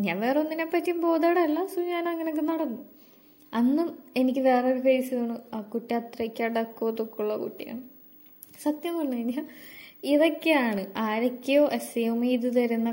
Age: 20-39